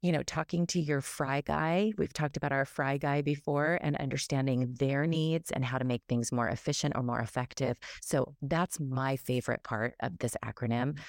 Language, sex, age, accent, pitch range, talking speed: English, female, 30-49, American, 125-160 Hz, 195 wpm